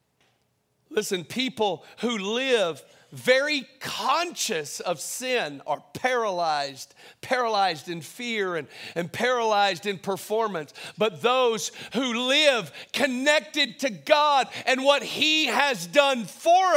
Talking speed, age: 110 wpm, 50-69